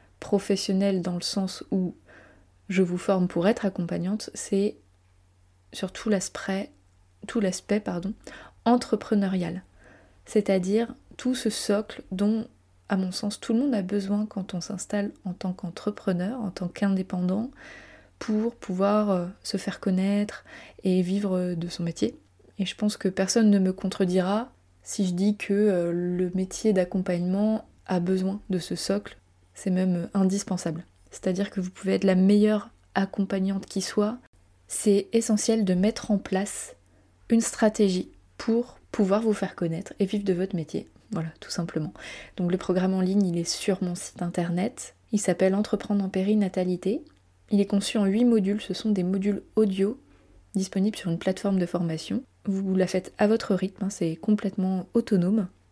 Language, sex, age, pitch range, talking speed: French, female, 20-39, 180-205 Hz, 160 wpm